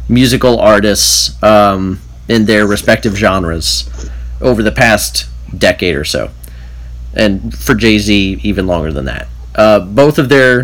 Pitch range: 70-115 Hz